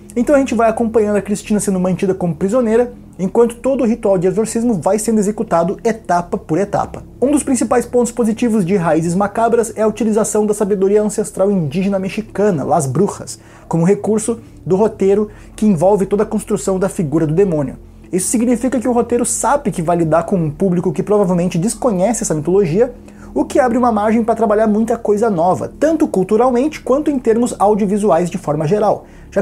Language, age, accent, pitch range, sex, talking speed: Portuguese, 20-39, Brazilian, 190-230 Hz, male, 185 wpm